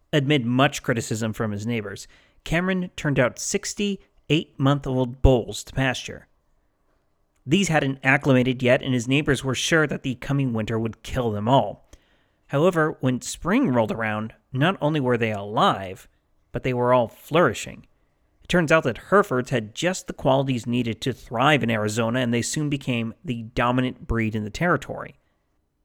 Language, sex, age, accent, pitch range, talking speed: English, male, 30-49, American, 115-145 Hz, 165 wpm